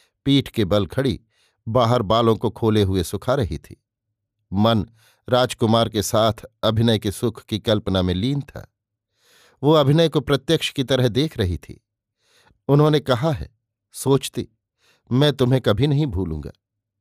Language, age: Hindi, 50-69